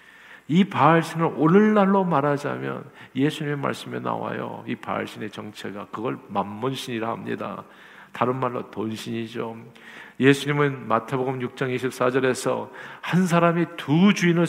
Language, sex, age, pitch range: Korean, male, 50-69, 125-170 Hz